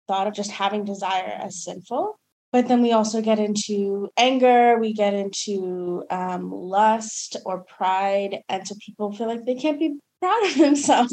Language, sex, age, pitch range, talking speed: English, female, 20-39, 185-245 Hz, 175 wpm